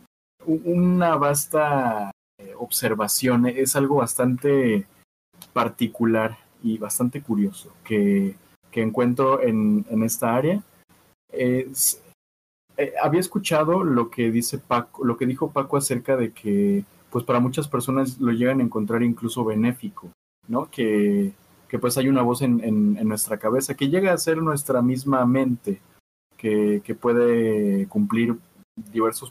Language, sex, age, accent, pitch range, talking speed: Spanish, male, 30-49, Mexican, 110-140 Hz, 135 wpm